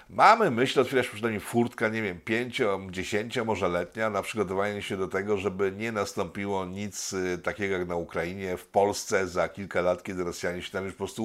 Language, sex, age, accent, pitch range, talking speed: Polish, male, 50-69, native, 95-110 Hz, 195 wpm